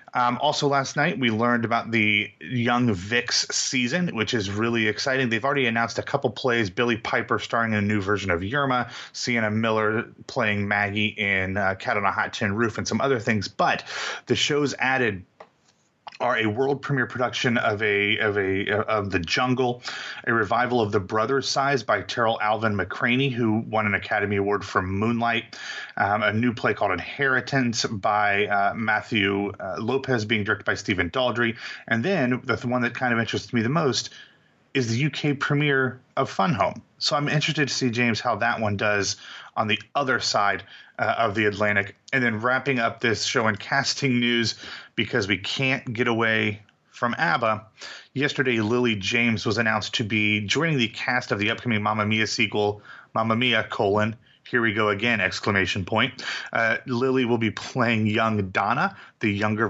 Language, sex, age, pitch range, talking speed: English, male, 30-49, 105-125 Hz, 180 wpm